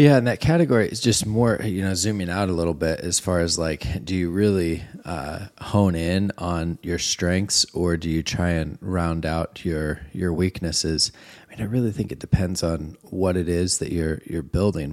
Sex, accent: male, American